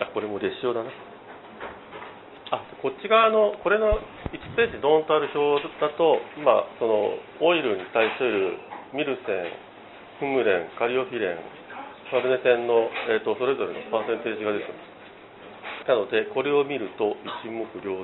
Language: Japanese